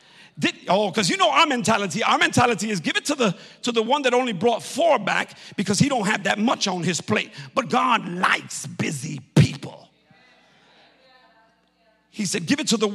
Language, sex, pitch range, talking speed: English, male, 170-245 Hz, 195 wpm